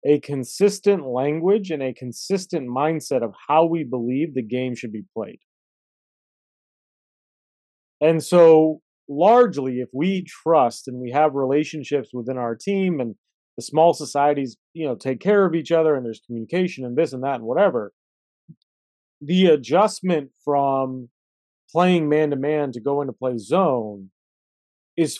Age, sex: 40-59, male